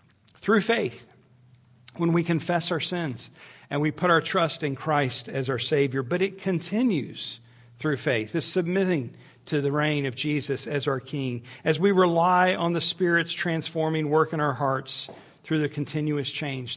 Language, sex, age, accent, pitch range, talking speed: English, male, 50-69, American, 125-160 Hz, 170 wpm